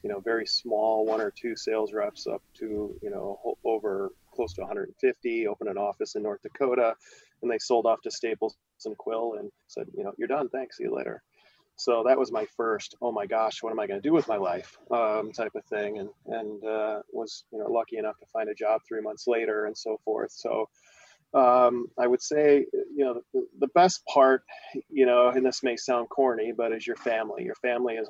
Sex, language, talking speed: male, English, 225 wpm